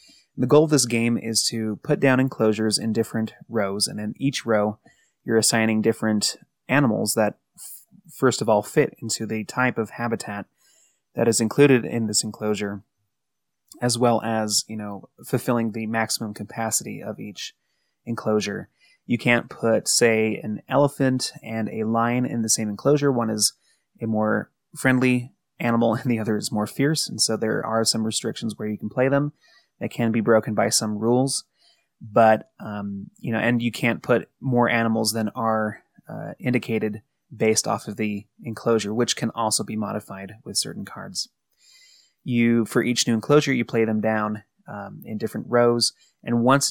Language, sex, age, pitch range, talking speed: English, male, 20-39, 110-125 Hz, 170 wpm